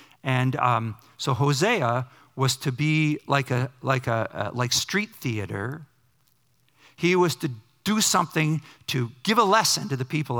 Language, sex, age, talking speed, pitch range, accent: English, male, 50-69, 155 wpm, 120-145 Hz, American